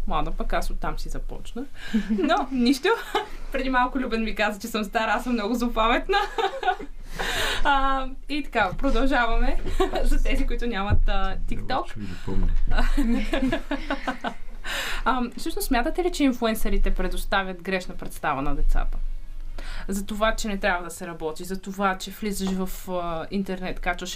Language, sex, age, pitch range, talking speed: Bulgarian, female, 20-39, 185-255 Hz, 135 wpm